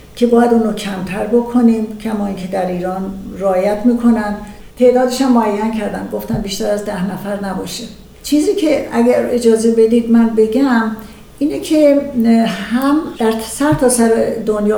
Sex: female